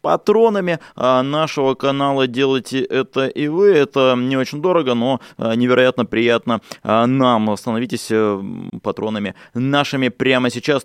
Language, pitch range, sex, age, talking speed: Russian, 110-135 Hz, male, 20-39, 110 wpm